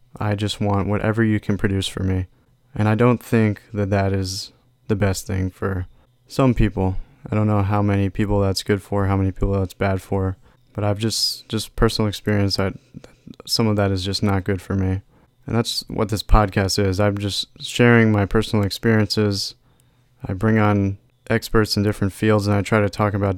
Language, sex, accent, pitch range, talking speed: English, male, American, 100-115 Hz, 200 wpm